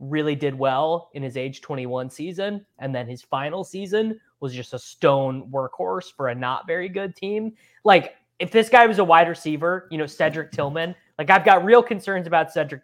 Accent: American